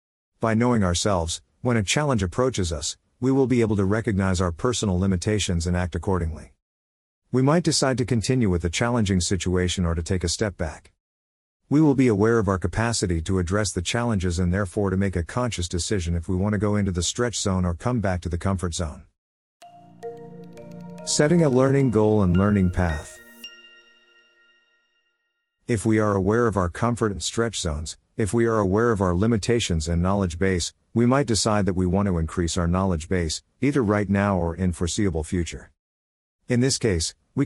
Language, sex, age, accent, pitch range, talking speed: English, male, 50-69, American, 90-115 Hz, 190 wpm